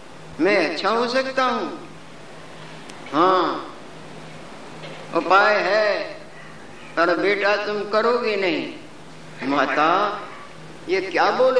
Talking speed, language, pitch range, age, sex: 90 wpm, Hindi, 190-235 Hz, 50-69, female